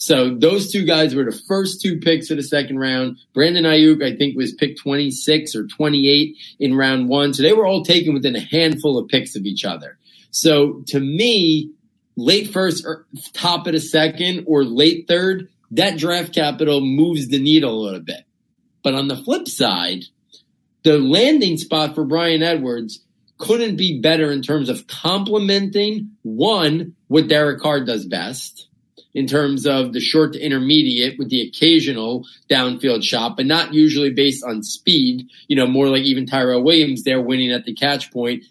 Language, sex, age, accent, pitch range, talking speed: English, male, 40-59, American, 130-165 Hz, 180 wpm